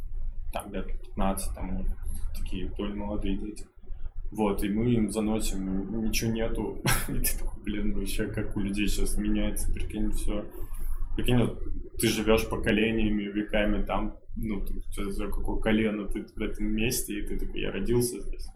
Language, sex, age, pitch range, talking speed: Russian, male, 20-39, 105-115 Hz, 155 wpm